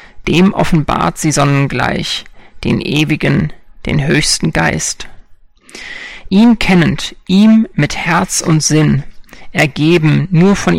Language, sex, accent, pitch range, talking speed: German, male, German, 155-190 Hz, 105 wpm